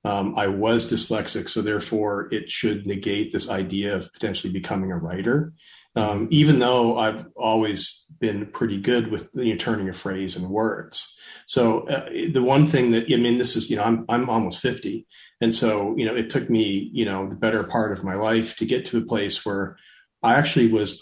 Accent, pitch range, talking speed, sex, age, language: American, 100-120 Hz, 205 wpm, male, 40-59, English